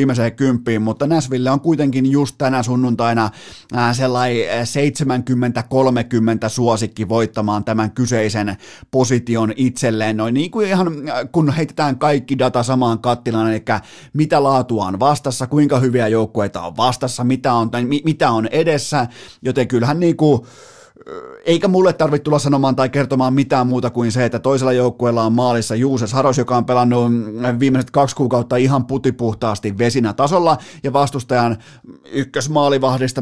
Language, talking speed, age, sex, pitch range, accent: Finnish, 140 wpm, 30-49, male, 115-140 Hz, native